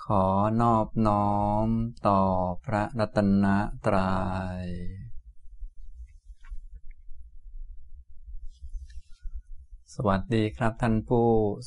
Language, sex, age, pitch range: Thai, male, 20-39, 70-105 Hz